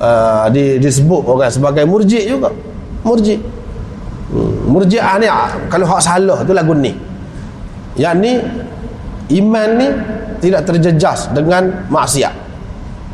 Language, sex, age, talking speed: Malay, male, 30-49, 125 wpm